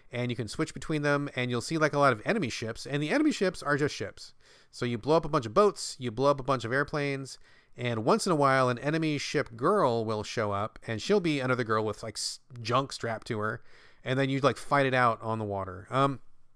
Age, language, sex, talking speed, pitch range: 30-49, English, male, 260 wpm, 120-175 Hz